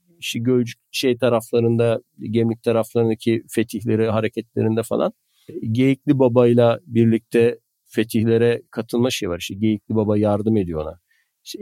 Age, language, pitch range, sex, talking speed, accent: 50-69, Turkish, 115-145 Hz, male, 130 wpm, native